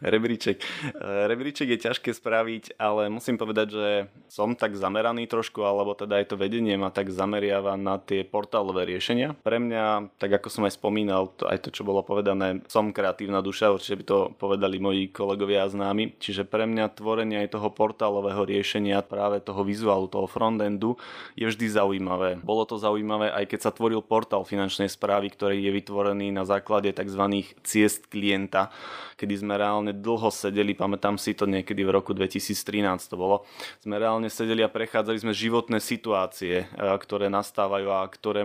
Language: Slovak